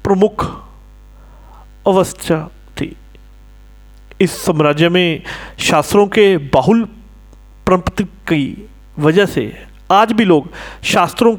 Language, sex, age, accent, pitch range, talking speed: Hindi, male, 40-59, native, 155-210 Hz, 85 wpm